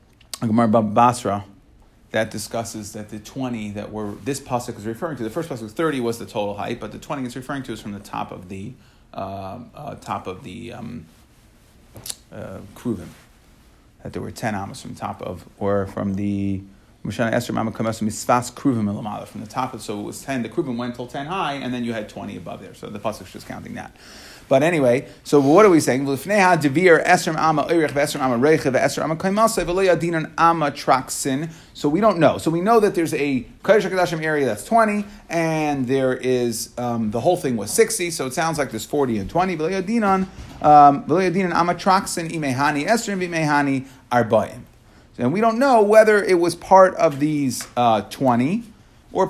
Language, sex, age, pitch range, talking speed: English, male, 30-49, 115-170 Hz, 165 wpm